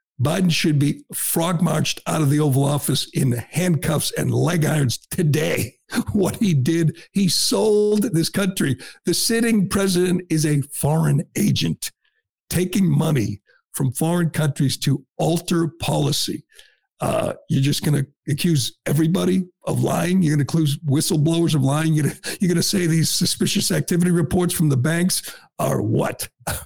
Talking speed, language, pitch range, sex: 145 wpm, English, 140-190 Hz, male